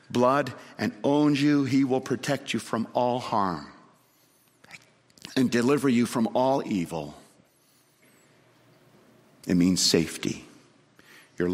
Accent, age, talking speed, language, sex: American, 50-69, 110 wpm, English, male